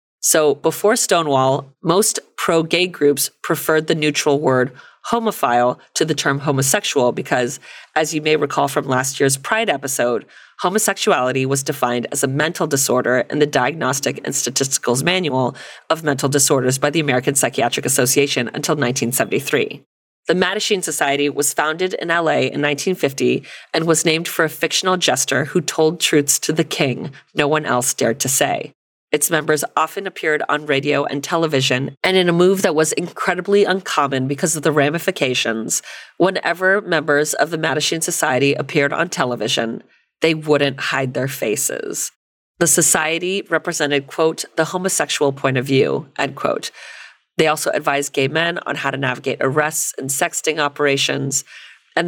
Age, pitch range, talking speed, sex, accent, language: 30-49, 140-165 Hz, 155 wpm, female, American, English